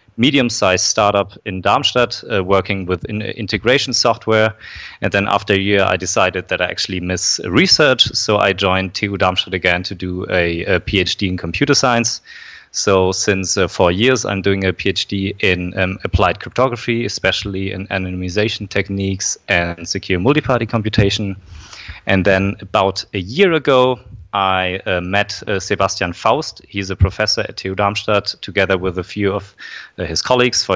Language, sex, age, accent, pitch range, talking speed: English, male, 30-49, German, 95-110 Hz, 160 wpm